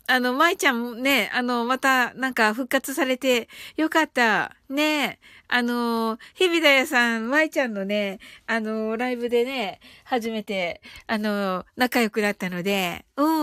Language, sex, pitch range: Japanese, female, 240-330 Hz